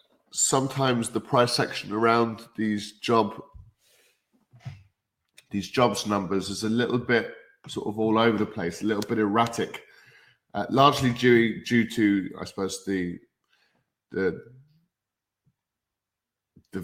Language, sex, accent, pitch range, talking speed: English, male, British, 95-115 Hz, 120 wpm